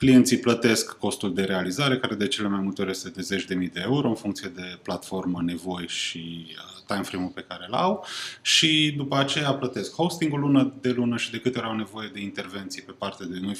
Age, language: 20-39, Romanian